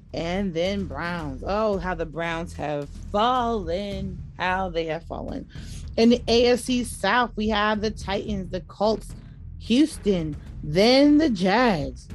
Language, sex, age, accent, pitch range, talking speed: English, female, 30-49, American, 165-220 Hz, 135 wpm